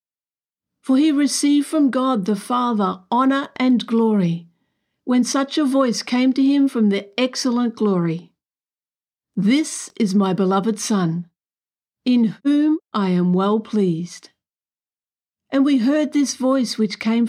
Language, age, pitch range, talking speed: English, 50-69, 195-255 Hz, 135 wpm